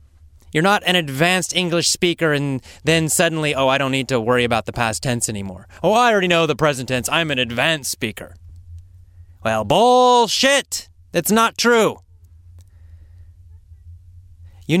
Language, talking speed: English, 150 wpm